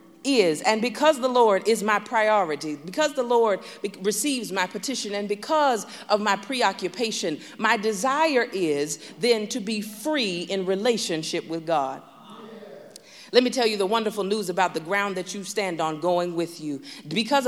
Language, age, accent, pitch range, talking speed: English, 40-59, American, 175-245 Hz, 170 wpm